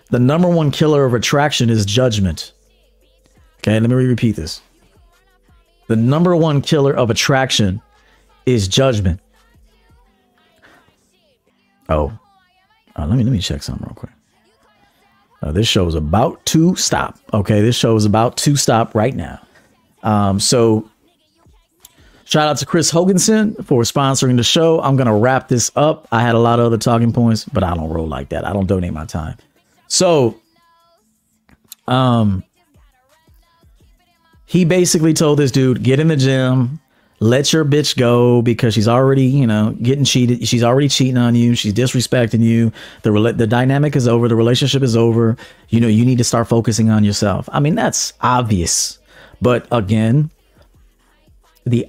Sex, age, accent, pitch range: male, 40-59, American, 110-135 Hz